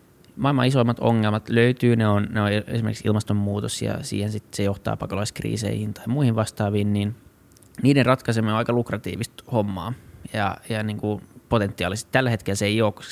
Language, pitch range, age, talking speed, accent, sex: Finnish, 105-120 Hz, 20-39, 165 wpm, native, male